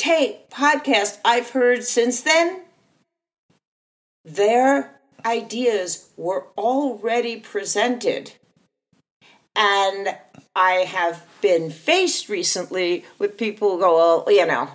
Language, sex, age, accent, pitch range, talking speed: English, female, 50-69, American, 180-255 Hz, 100 wpm